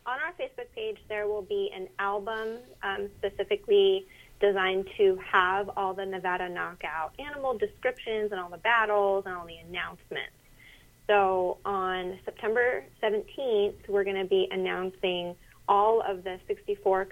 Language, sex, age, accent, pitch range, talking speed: English, female, 30-49, American, 190-250 Hz, 145 wpm